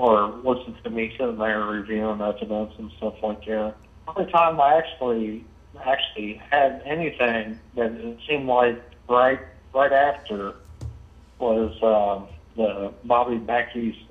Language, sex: English, male